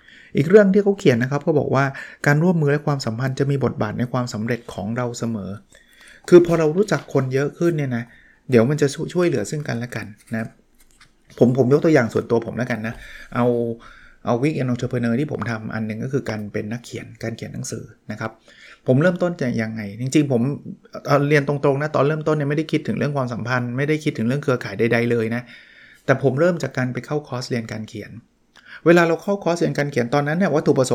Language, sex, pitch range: Thai, male, 120-155 Hz